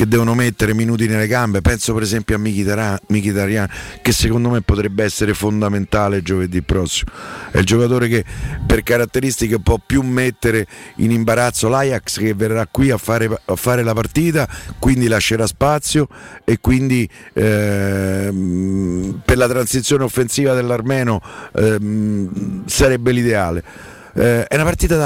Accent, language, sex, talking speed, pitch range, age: native, Italian, male, 145 wpm, 100-125 Hz, 50-69